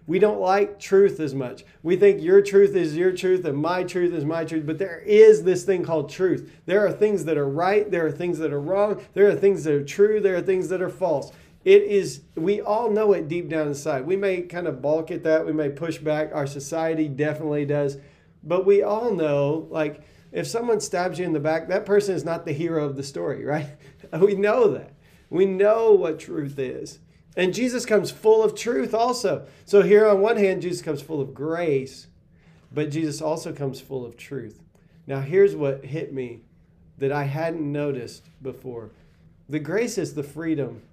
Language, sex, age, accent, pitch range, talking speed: English, male, 40-59, American, 145-190 Hz, 210 wpm